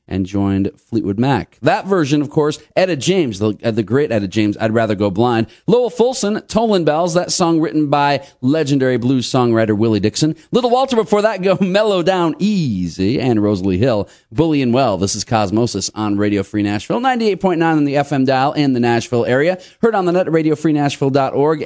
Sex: male